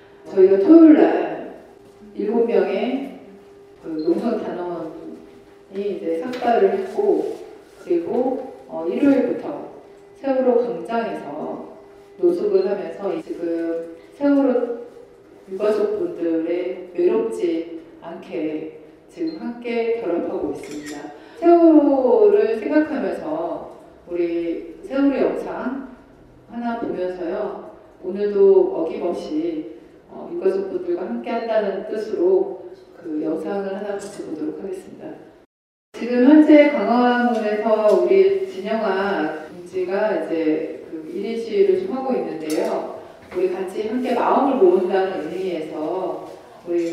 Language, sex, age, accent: Korean, female, 40-59, native